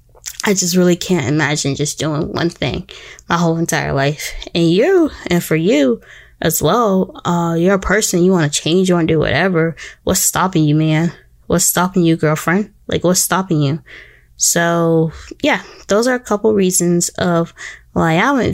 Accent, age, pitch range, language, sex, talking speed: American, 20-39, 165-185 Hz, English, female, 180 wpm